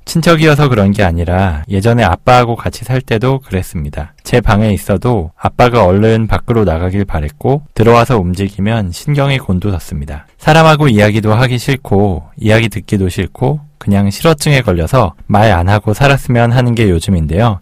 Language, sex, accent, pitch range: Korean, male, native, 95-125 Hz